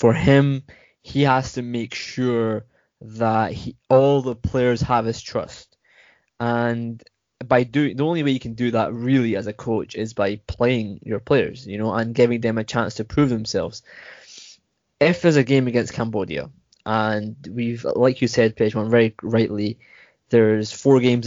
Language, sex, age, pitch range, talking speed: English, male, 20-39, 110-125 Hz, 170 wpm